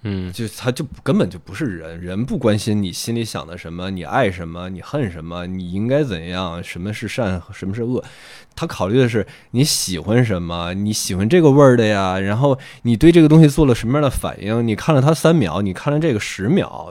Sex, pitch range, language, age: male, 95-130 Hz, Chinese, 20-39